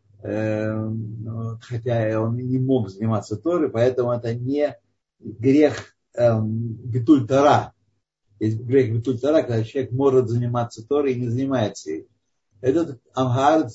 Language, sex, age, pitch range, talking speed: Russian, male, 50-69, 115-140 Hz, 115 wpm